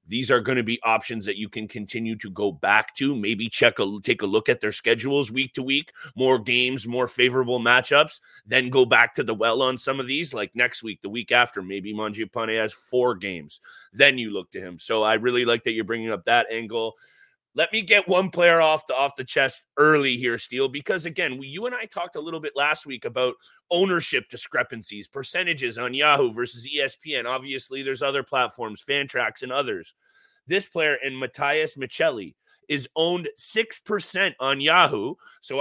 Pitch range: 120-175 Hz